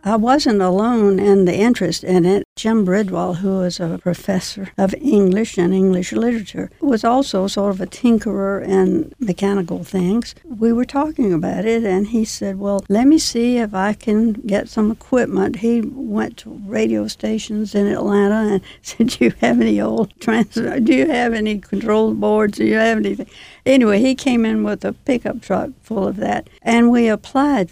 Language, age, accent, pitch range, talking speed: English, 60-79, American, 185-225 Hz, 180 wpm